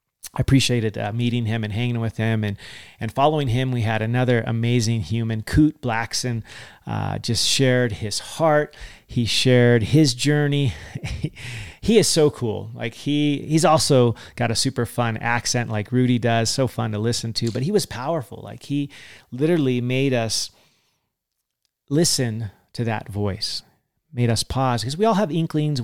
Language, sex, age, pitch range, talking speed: English, male, 30-49, 115-140 Hz, 165 wpm